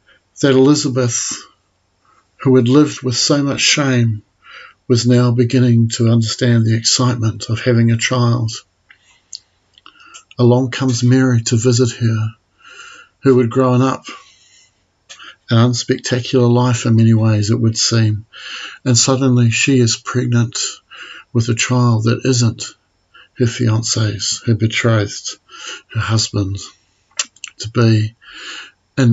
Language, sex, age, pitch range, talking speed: English, male, 50-69, 115-125 Hz, 115 wpm